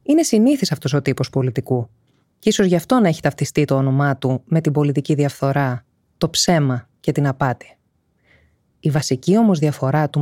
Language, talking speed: Greek, 175 wpm